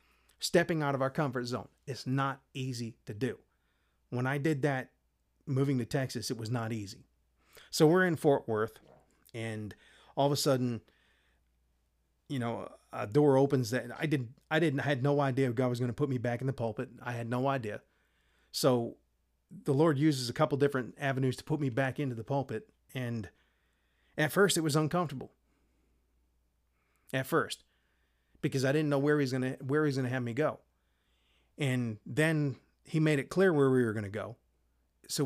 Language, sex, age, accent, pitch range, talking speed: English, male, 30-49, American, 115-150 Hz, 190 wpm